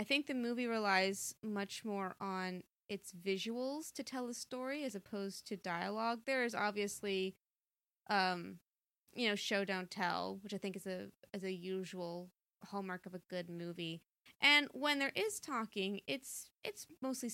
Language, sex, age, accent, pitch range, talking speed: English, female, 20-39, American, 185-220 Hz, 165 wpm